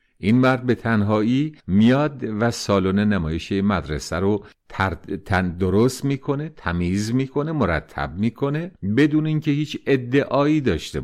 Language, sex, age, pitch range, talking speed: Persian, male, 50-69, 95-140 Hz, 115 wpm